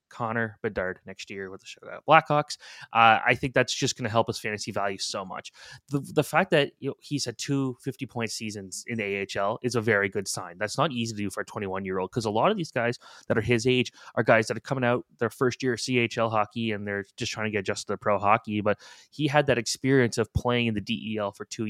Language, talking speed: English, 255 wpm